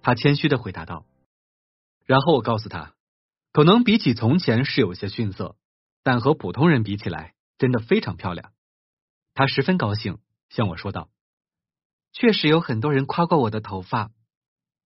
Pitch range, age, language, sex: 105-155 Hz, 20-39, Chinese, male